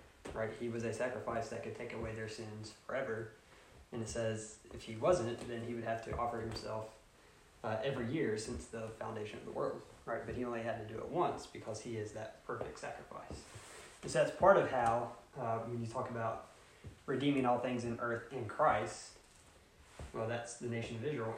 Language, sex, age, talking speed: English, male, 20-39, 205 wpm